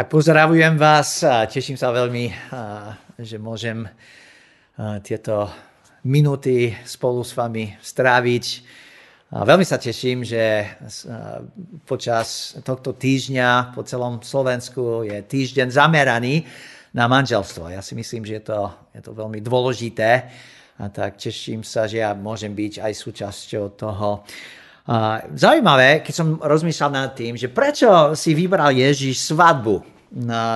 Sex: male